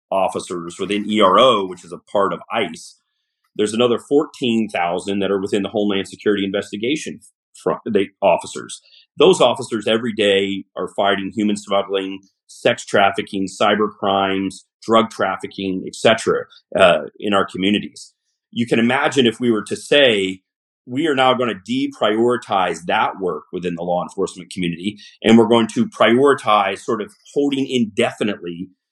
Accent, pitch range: American, 95-115 Hz